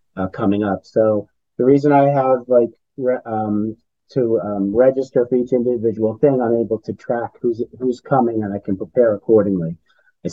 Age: 30-49